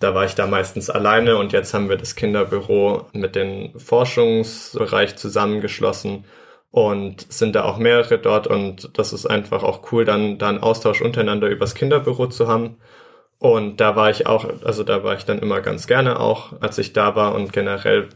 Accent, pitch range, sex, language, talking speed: German, 105-130 Hz, male, German, 185 wpm